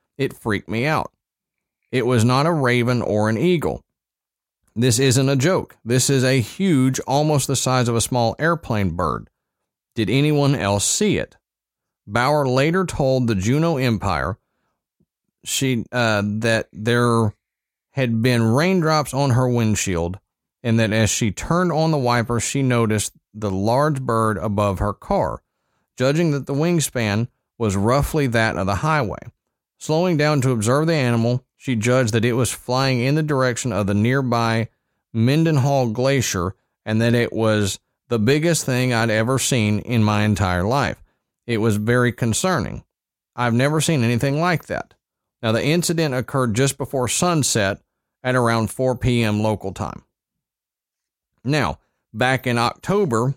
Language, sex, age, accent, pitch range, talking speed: English, male, 40-59, American, 110-140 Hz, 155 wpm